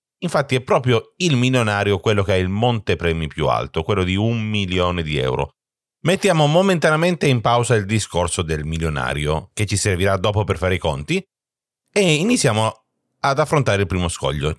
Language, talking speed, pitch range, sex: Italian, 175 wpm, 85-115 Hz, male